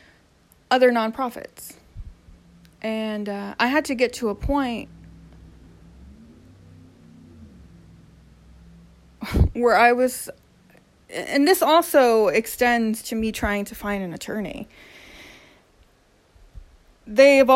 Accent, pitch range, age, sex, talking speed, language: American, 205-280 Hz, 30-49, female, 90 wpm, English